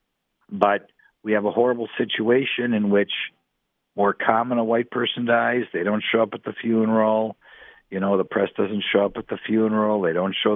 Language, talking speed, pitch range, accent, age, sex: English, 195 wpm, 95-110 Hz, American, 60-79, male